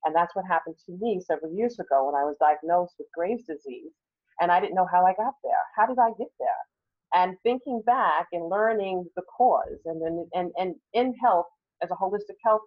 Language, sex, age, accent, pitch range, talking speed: English, female, 40-59, American, 175-220 Hz, 215 wpm